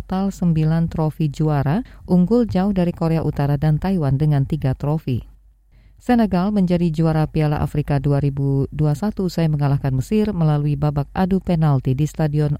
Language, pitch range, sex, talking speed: Indonesian, 145-175 Hz, female, 140 wpm